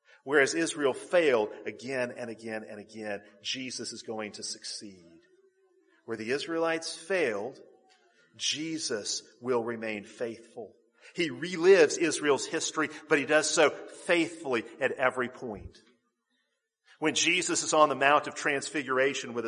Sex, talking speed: male, 130 wpm